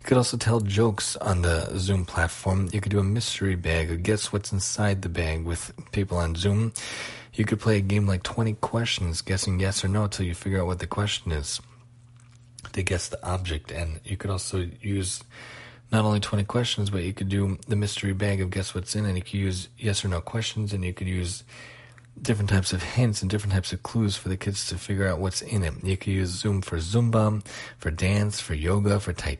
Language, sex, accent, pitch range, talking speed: English, male, American, 90-110 Hz, 225 wpm